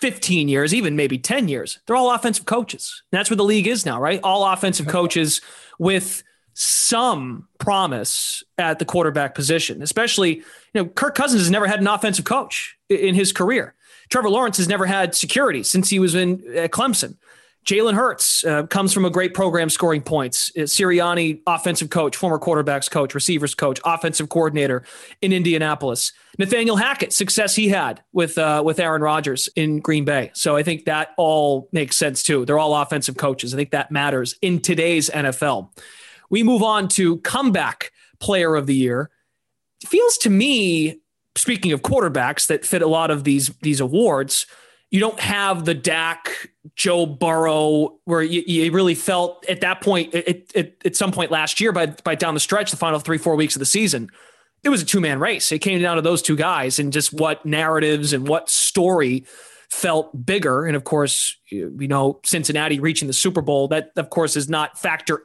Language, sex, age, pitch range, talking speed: English, male, 30-49, 150-195 Hz, 190 wpm